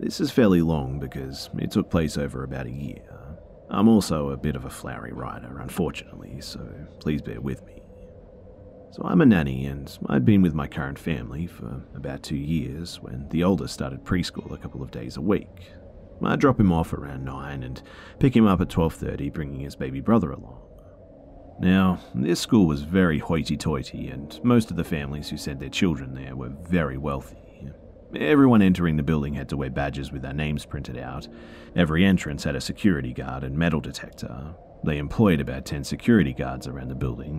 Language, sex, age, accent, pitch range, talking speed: English, male, 30-49, Australian, 70-85 Hz, 190 wpm